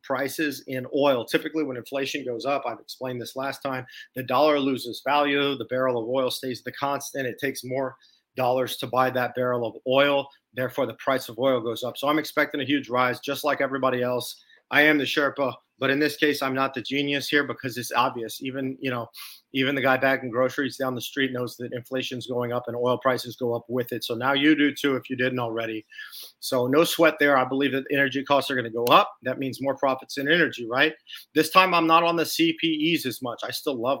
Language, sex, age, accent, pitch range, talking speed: English, male, 30-49, American, 125-145 Hz, 235 wpm